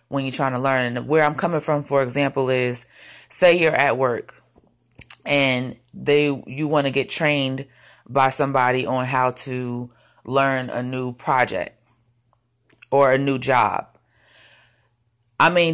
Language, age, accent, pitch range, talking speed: English, 30-49, American, 130-155 Hz, 150 wpm